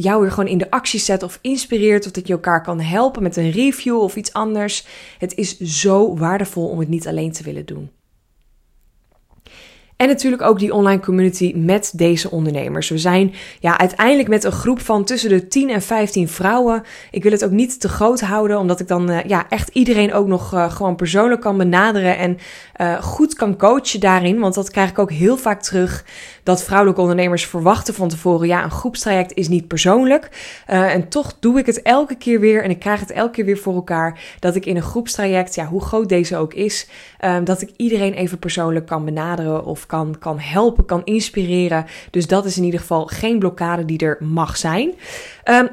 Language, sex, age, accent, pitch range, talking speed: Dutch, female, 20-39, Dutch, 180-225 Hz, 210 wpm